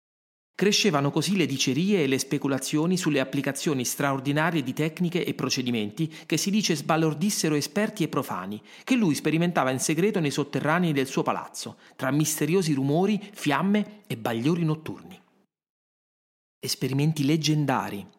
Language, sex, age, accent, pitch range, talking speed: Italian, male, 40-59, native, 140-180 Hz, 130 wpm